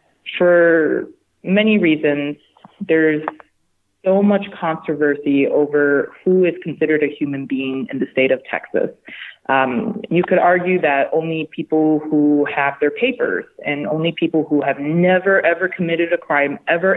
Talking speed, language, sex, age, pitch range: 145 wpm, English, female, 30-49, 145-175 Hz